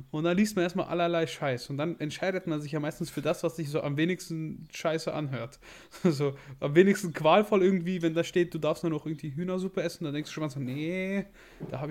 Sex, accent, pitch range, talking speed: male, German, 140-180 Hz, 235 wpm